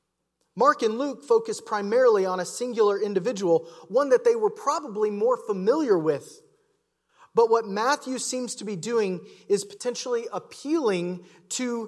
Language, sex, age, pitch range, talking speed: English, male, 30-49, 160-235 Hz, 140 wpm